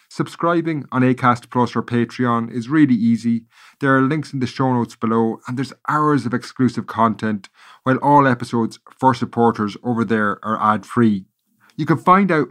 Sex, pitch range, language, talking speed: male, 115-145 Hz, English, 175 wpm